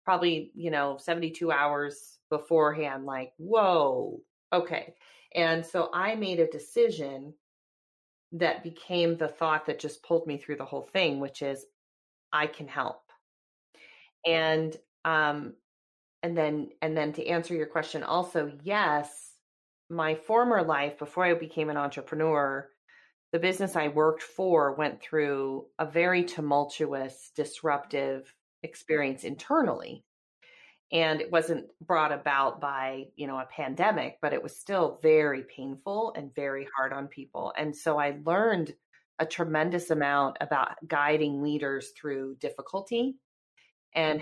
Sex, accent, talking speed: female, American, 135 wpm